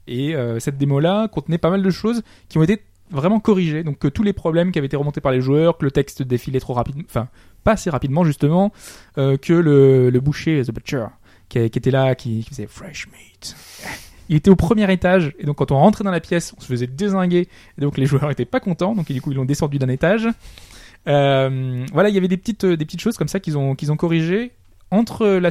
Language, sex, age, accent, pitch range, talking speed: French, male, 20-39, French, 125-175 Hz, 250 wpm